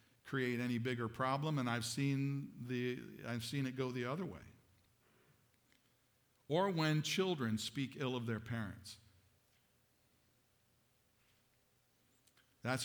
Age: 50-69